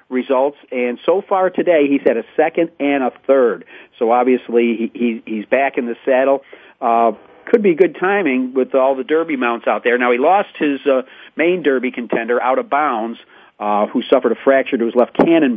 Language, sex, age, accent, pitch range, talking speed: English, male, 50-69, American, 120-140 Hz, 205 wpm